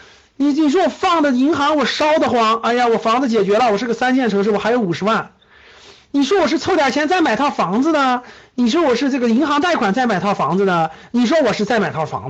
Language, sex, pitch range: Chinese, male, 200-300 Hz